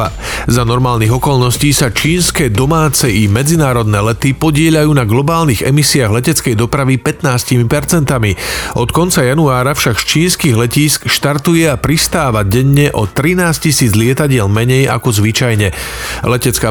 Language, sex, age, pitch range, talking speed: Slovak, male, 40-59, 115-145 Hz, 125 wpm